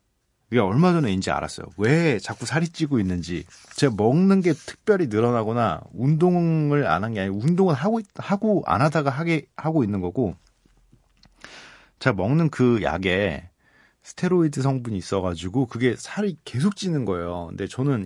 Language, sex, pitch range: Korean, male, 105-160 Hz